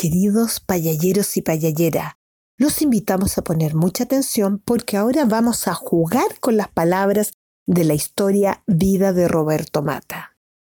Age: 40-59